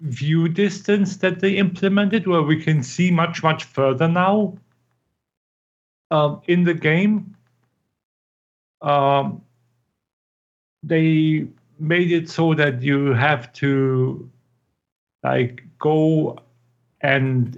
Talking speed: 100 wpm